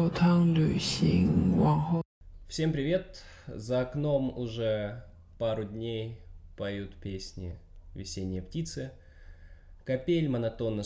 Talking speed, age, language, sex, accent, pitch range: 70 wpm, 20-39, Russian, male, native, 95-120 Hz